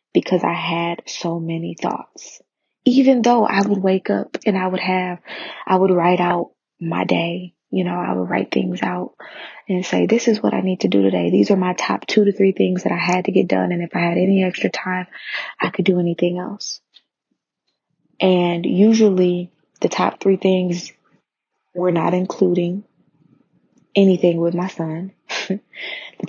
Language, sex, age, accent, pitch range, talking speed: English, female, 20-39, American, 170-190 Hz, 180 wpm